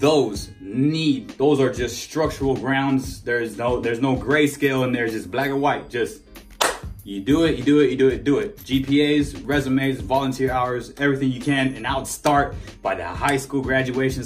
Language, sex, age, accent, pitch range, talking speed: English, male, 20-39, American, 130-165 Hz, 195 wpm